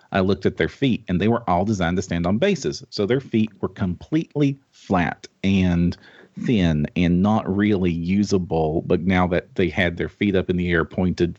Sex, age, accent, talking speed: male, 40-59, American, 200 wpm